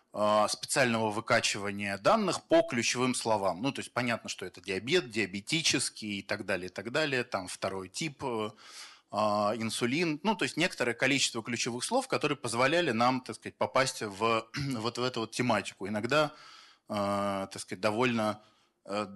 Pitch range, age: 105-130 Hz, 20-39